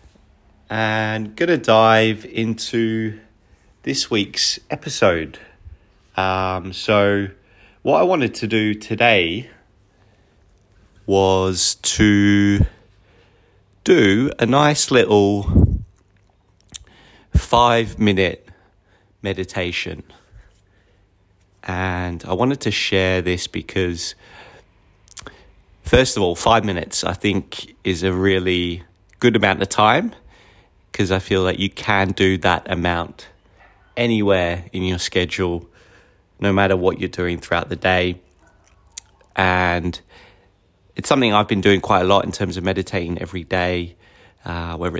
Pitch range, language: 90-100 Hz, English